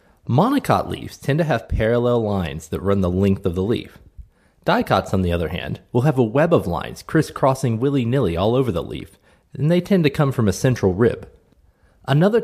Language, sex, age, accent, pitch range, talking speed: English, male, 30-49, American, 90-145 Hz, 200 wpm